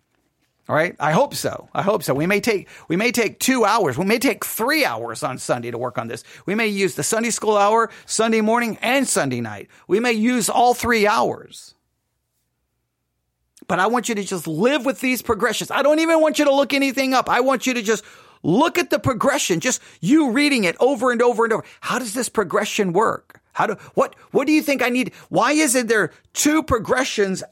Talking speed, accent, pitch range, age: 220 wpm, American, 190-255 Hz, 40-59